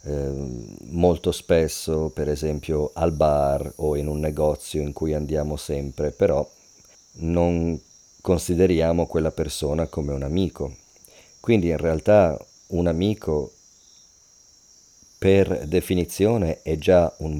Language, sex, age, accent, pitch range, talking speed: English, male, 40-59, Italian, 75-95 Hz, 110 wpm